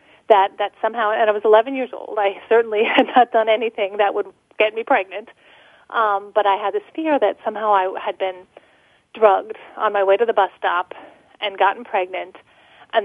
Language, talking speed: English, 200 wpm